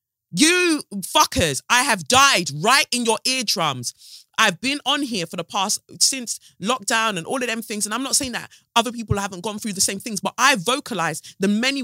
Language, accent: English, British